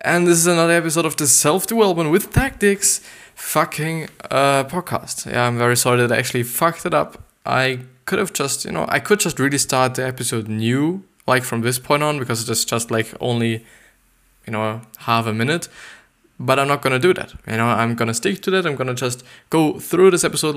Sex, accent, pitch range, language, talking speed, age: male, German, 120-160 Hz, English, 215 wpm, 20-39